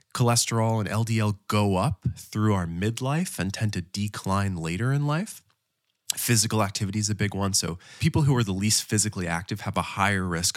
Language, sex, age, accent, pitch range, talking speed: English, male, 20-39, American, 95-120 Hz, 185 wpm